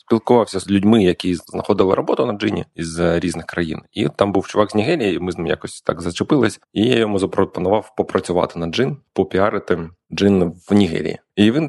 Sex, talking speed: male, 190 wpm